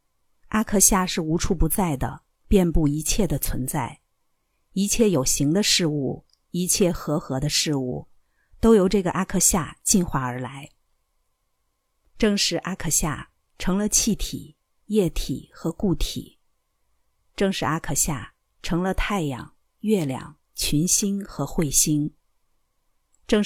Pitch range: 145-195 Hz